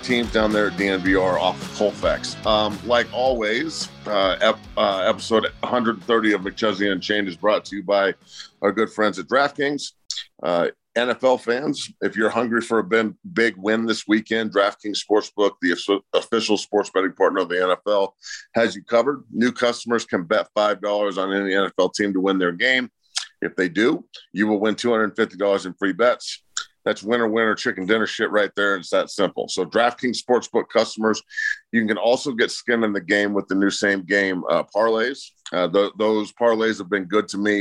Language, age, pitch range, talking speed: English, 50-69, 100-115 Hz, 185 wpm